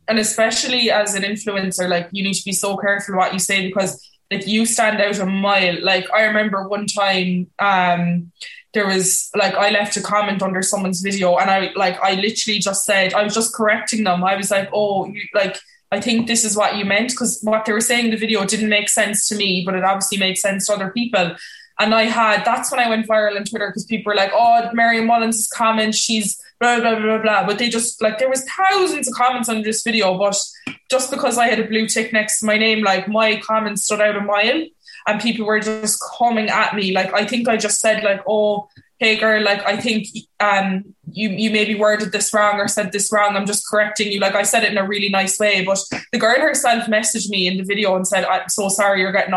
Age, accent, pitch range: 20-39, Irish, 195-220 Hz